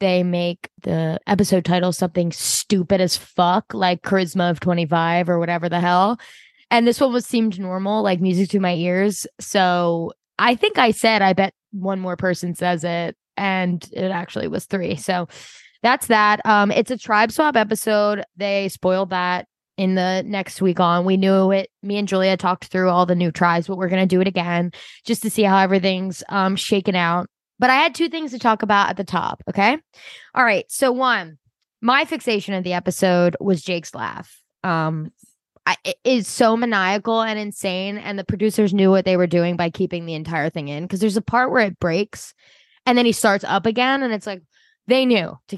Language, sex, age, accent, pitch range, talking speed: English, female, 20-39, American, 180-220 Hz, 205 wpm